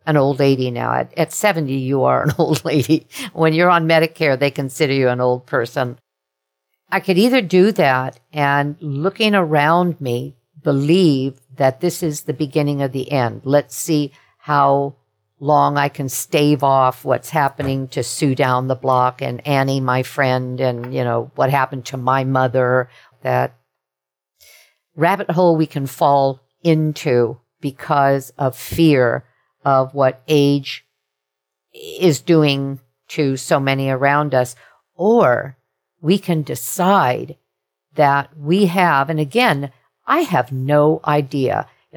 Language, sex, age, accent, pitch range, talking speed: English, female, 50-69, American, 130-165 Hz, 145 wpm